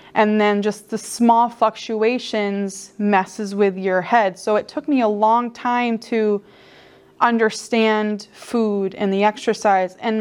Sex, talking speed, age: female, 140 wpm, 20-39